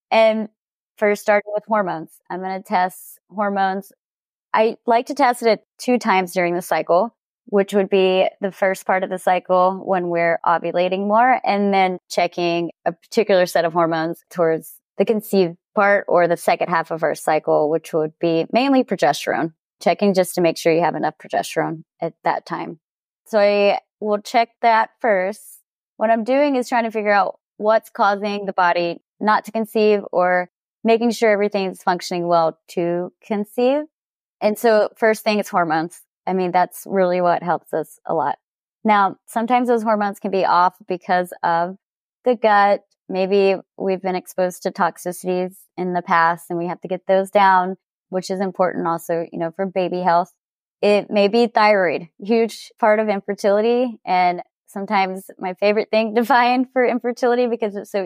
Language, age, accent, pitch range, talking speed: English, 20-39, American, 180-220 Hz, 175 wpm